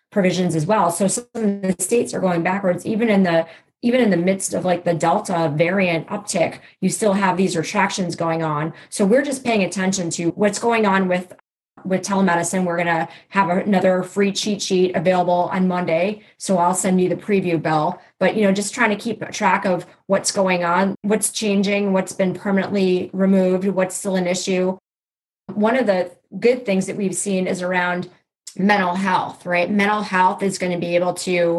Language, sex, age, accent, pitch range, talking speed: English, female, 30-49, American, 175-200 Hz, 200 wpm